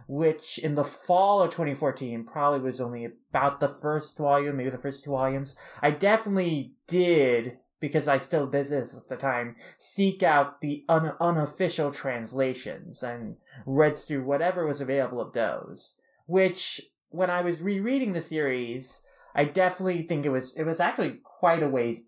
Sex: male